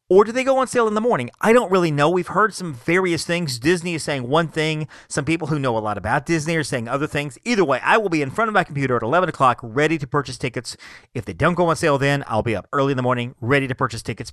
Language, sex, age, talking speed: English, male, 40-59, 295 wpm